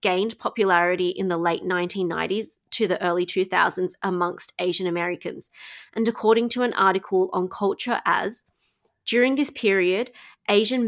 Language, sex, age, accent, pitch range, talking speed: English, female, 20-39, Australian, 185-230 Hz, 140 wpm